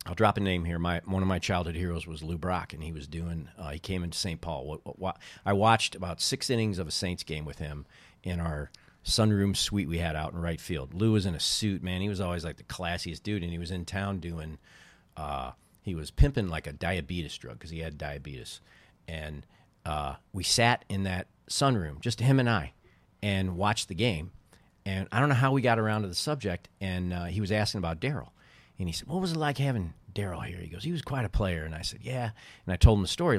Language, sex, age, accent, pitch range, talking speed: English, male, 40-59, American, 85-110 Hz, 255 wpm